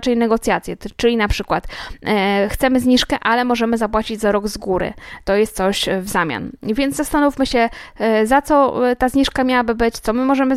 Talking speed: 175 wpm